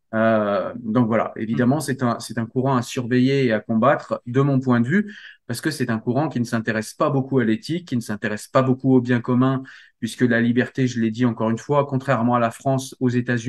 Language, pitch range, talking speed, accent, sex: French, 115-140 Hz, 240 wpm, French, male